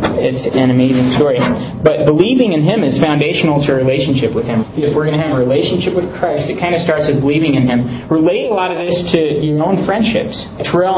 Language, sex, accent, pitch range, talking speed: English, male, American, 135-170 Hz, 230 wpm